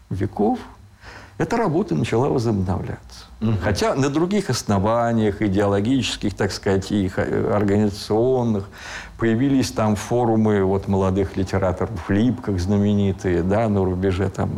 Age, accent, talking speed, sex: 50-69, native, 105 wpm, male